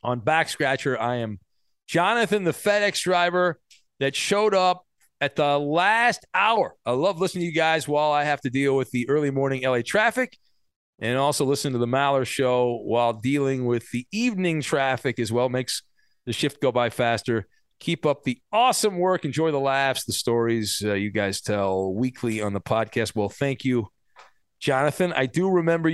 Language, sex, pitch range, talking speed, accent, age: English, male, 125-170 Hz, 180 wpm, American, 40-59